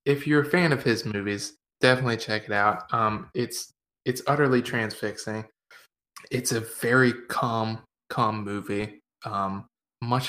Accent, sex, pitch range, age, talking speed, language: American, male, 105-120 Hz, 20-39, 140 wpm, English